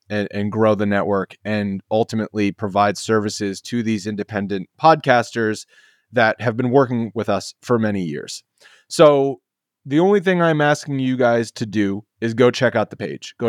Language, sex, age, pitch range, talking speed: English, male, 30-49, 105-130 Hz, 175 wpm